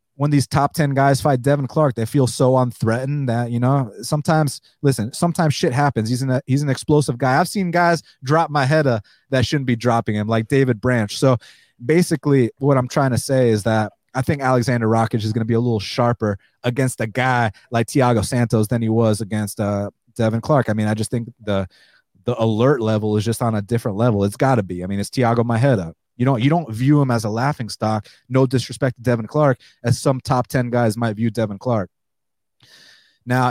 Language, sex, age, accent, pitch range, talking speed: English, male, 30-49, American, 115-140 Hz, 220 wpm